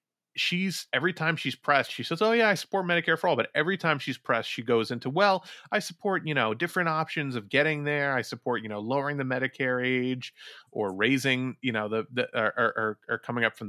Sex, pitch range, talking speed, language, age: male, 115-145 Hz, 230 wpm, English, 30-49